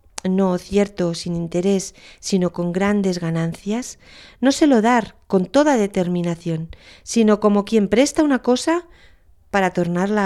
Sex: female